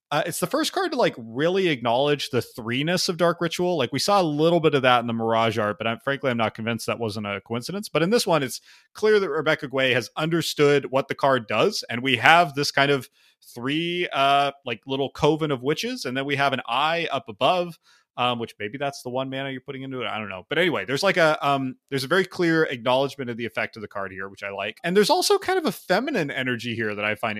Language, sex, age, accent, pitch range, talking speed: English, male, 30-49, American, 115-160 Hz, 260 wpm